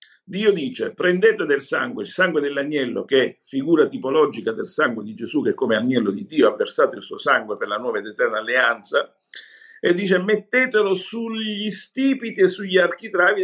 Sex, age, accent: male, 50-69, native